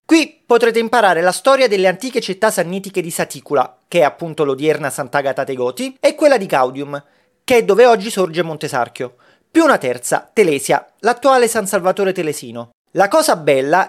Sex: male